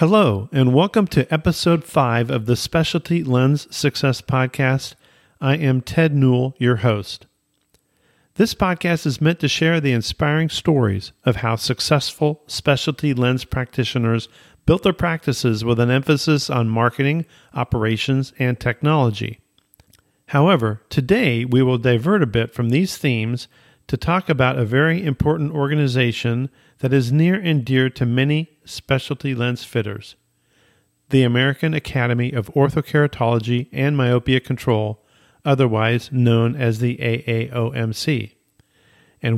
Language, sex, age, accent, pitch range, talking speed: English, male, 50-69, American, 120-150 Hz, 130 wpm